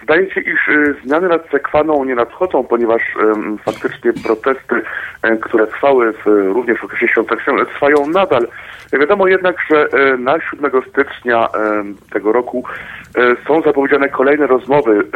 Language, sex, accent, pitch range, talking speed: Polish, male, native, 120-150 Hz, 125 wpm